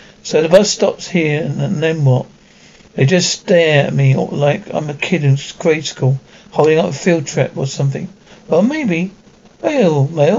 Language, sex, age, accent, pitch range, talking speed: English, male, 60-79, British, 150-185 Hz, 180 wpm